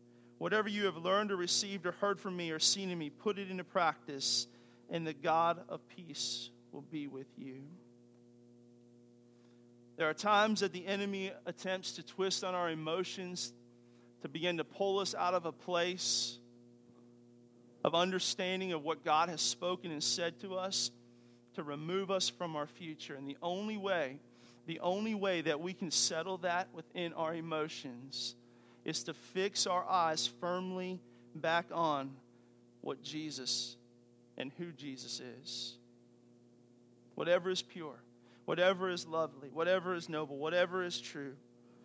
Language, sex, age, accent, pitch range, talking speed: English, male, 40-59, American, 120-185 Hz, 150 wpm